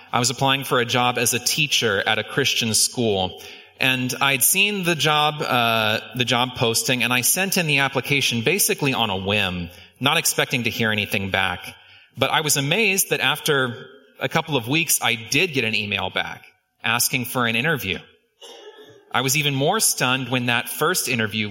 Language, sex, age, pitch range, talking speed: English, male, 30-49, 115-155 Hz, 185 wpm